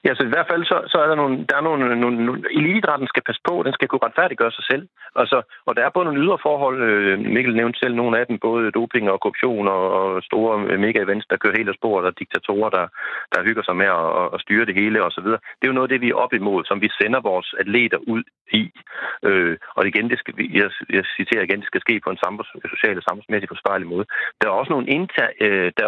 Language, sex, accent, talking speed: Danish, male, native, 255 wpm